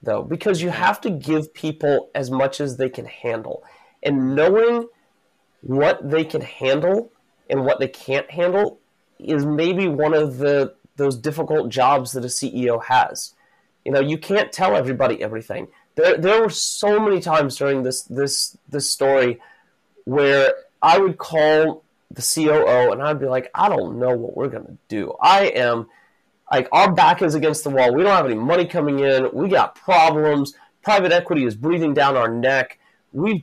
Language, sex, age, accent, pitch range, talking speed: English, male, 30-49, American, 135-190 Hz, 180 wpm